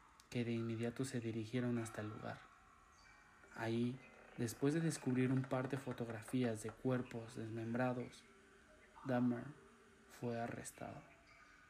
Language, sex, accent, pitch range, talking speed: Spanish, male, Mexican, 115-135 Hz, 115 wpm